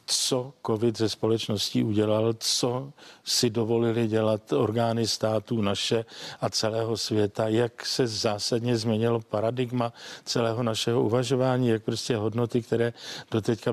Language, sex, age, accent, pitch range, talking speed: Czech, male, 50-69, native, 115-130 Hz, 120 wpm